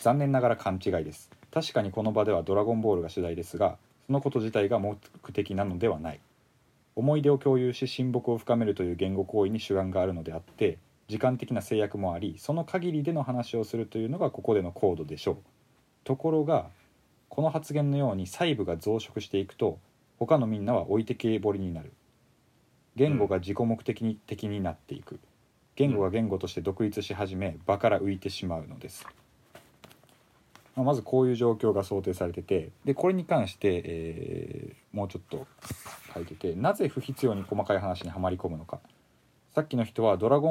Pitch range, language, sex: 95-135 Hz, Japanese, male